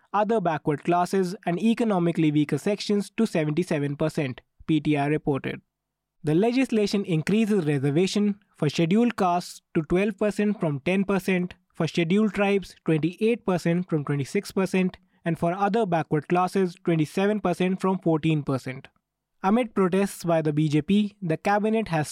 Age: 20-39